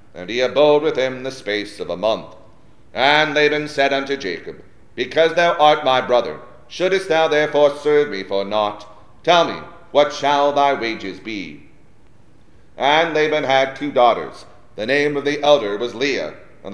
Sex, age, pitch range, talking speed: male, 40-59, 120-150 Hz, 170 wpm